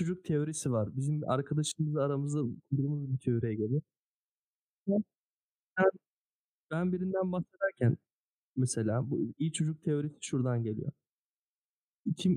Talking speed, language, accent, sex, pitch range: 100 wpm, Turkish, native, male, 130-165 Hz